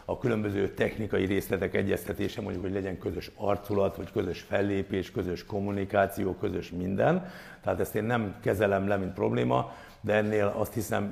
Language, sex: Hungarian, male